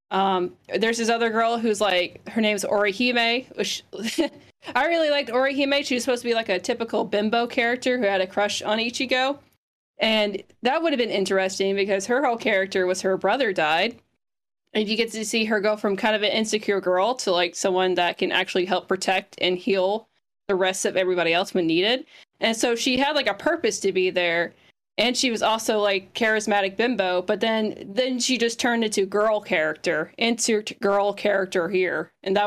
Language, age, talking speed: English, 20-39, 200 wpm